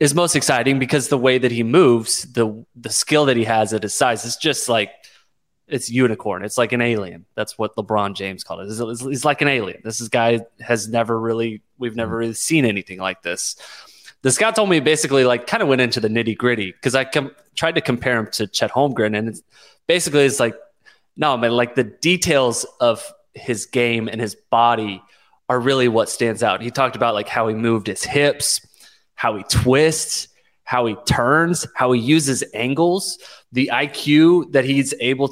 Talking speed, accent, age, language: 200 wpm, American, 20-39, English